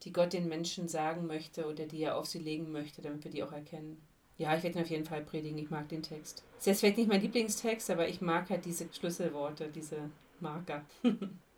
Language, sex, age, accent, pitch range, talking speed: German, female, 40-59, German, 160-205 Hz, 235 wpm